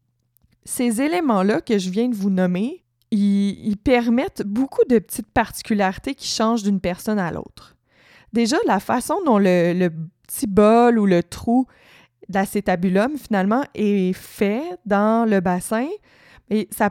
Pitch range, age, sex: 190-235 Hz, 20-39, female